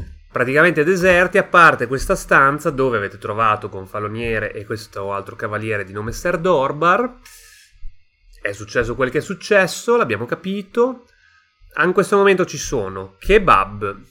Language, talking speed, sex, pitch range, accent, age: Italian, 140 wpm, male, 105-165 Hz, native, 30-49